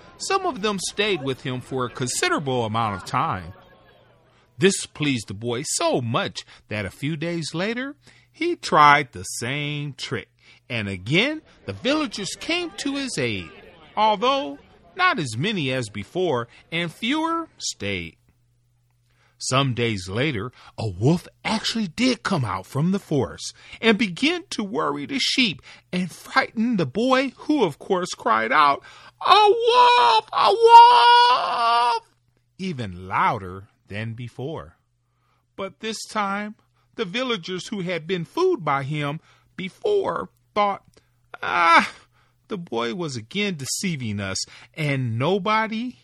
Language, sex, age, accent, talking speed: English, male, 40-59, American, 135 wpm